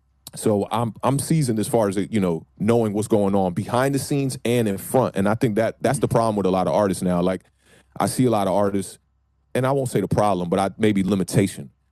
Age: 30-49